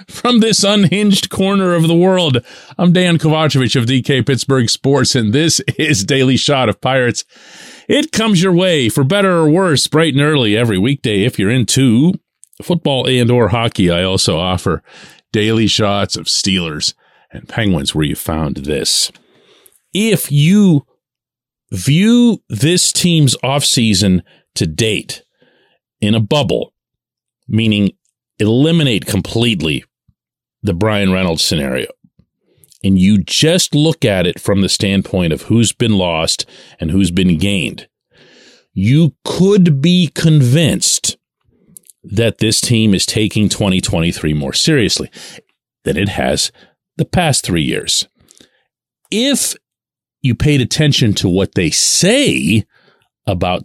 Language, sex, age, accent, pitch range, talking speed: English, male, 40-59, American, 100-155 Hz, 130 wpm